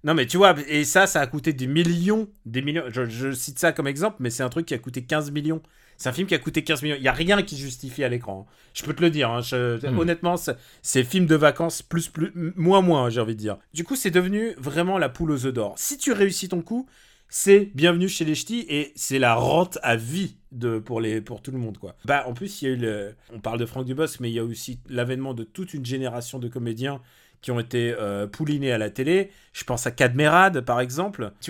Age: 30-49